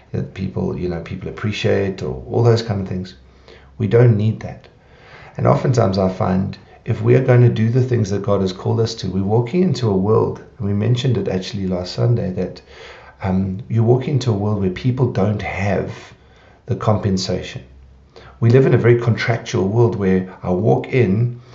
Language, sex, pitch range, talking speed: English, male, 95-115 Hz, 195 wpm